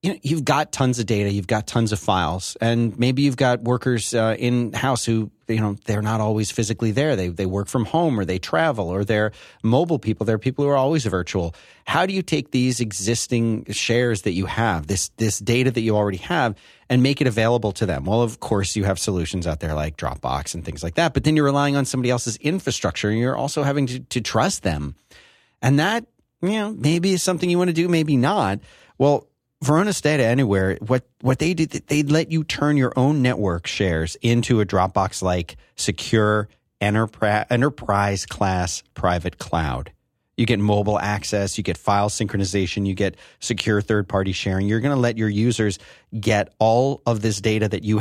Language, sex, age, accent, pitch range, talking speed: English, male, 30-49, American, 100-130 Hz, 200 wpm